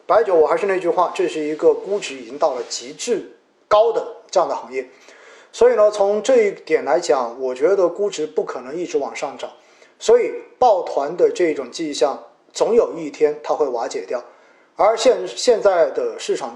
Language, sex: Chinese, male